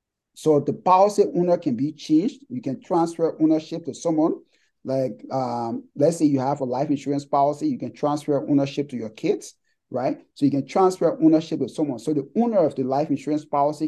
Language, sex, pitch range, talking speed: English, male, 140-195 Hz, 200 wpm